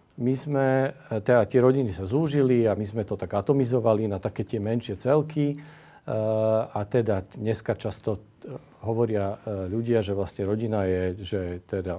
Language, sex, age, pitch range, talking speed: Slovak, male, 40-59, 105-135 Hz, 145 wpm